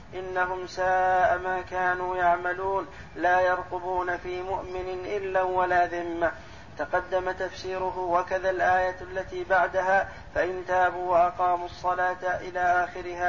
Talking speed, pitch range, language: 110 wpm, 180-185 Hz, Arabic